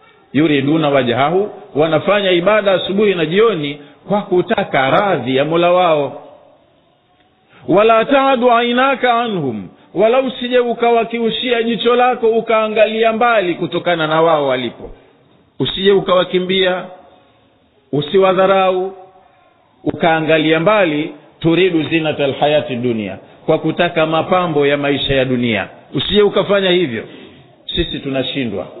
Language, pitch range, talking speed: Swahili, 140-195 Hz, 105 wpm